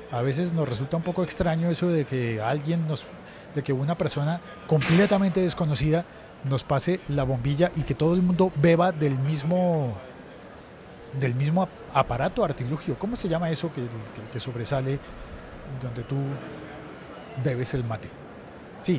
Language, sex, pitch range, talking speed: Spanish, male, 140-180 Hz, 150 wpm